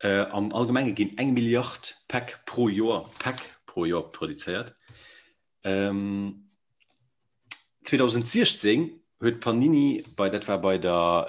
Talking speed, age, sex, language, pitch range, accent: 105 wpm, 40-59, male, English, 90-120 Hz, German